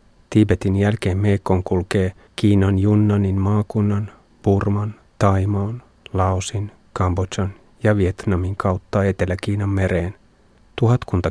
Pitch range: 95-105 Hz